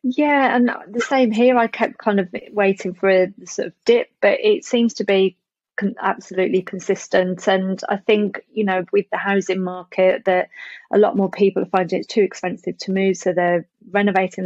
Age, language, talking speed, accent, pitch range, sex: 30-49, English, 190 wpm, British, 180-205 Hz, female